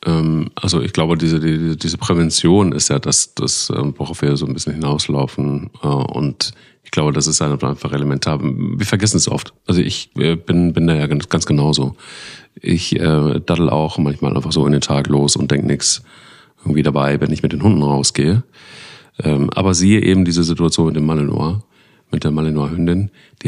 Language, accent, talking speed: German, German, 180 wpm